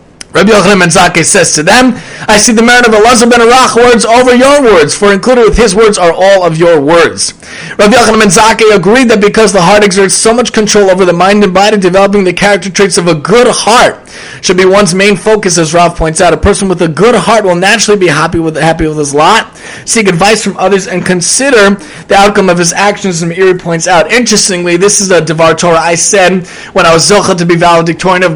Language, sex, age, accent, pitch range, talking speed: English, male, 30-49, American, 170-210 Hz, 230 wpm